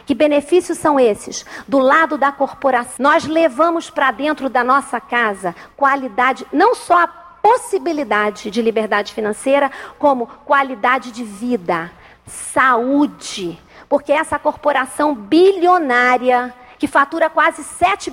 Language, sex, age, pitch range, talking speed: Portuguese, female, 40-59, 255-320 Hz, 120 wpm